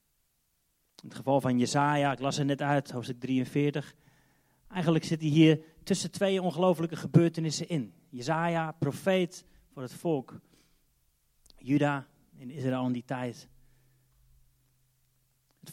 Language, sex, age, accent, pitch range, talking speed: Dutch, male, 30-49, Dutch, 130-165 Hz, 125 wpm